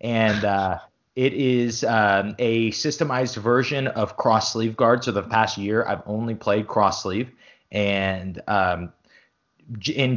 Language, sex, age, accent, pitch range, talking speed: English, male, 20-39, American, 100-115 Hz, 140 wpm